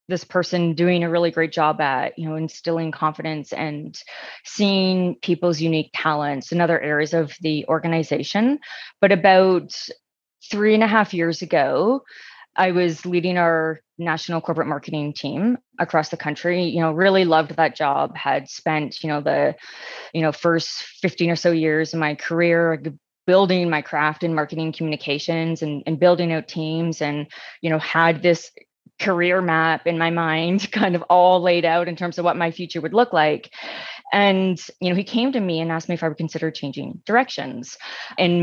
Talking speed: 180 wpm